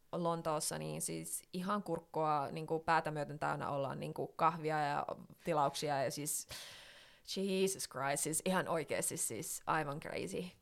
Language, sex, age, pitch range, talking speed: Finnish, female, 20-39, 155-185 Hz, 145 wpm